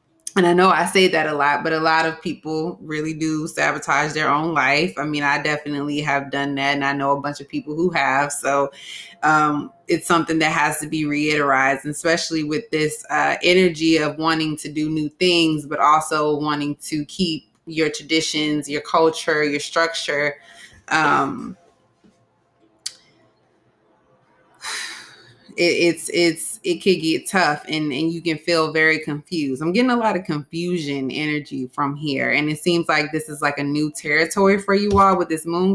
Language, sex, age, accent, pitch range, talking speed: English, female, 20-39, American, 150-175 Hz, 175 wpm